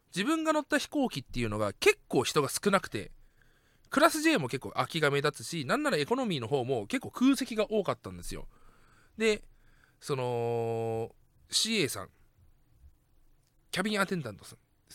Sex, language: male, Japanese